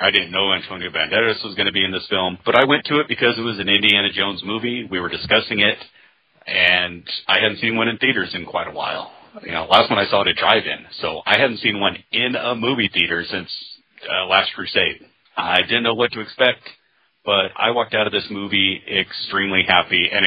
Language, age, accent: English, 40-59, American